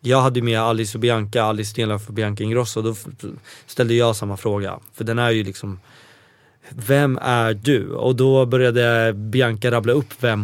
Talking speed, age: 185 wpm, 20-39